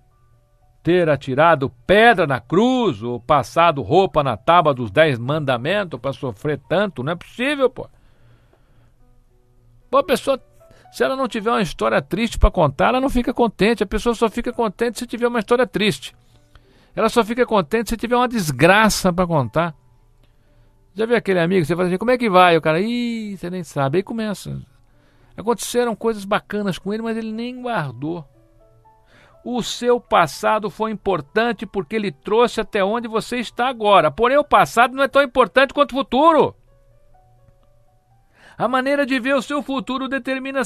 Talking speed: 170 wpm